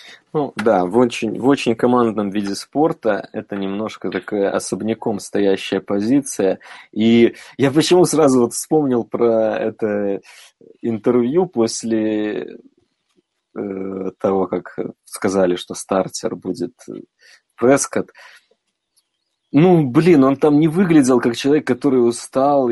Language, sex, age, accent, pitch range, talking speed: Russian, male, 20-39, native, 115-155 Hz, 110 wpm